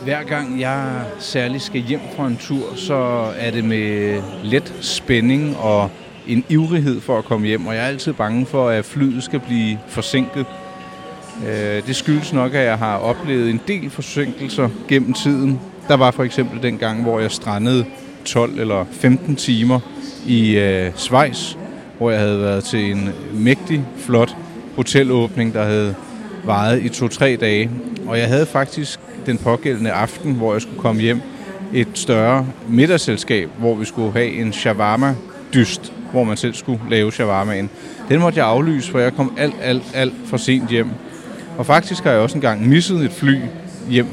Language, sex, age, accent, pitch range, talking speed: Danish, male, 30-49, native, 115-145 Hz, 170 wpm